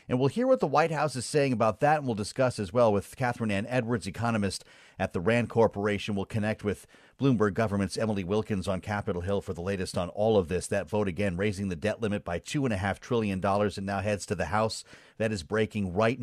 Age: 40-59